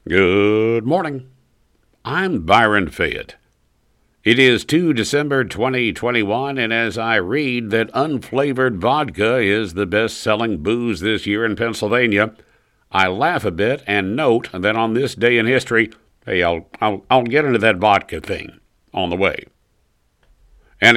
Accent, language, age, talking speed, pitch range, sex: American, English, 60-79, 145 wpm, 105-125 Hz, male